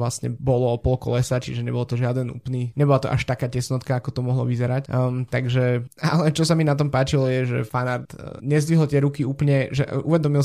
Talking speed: 215 wpm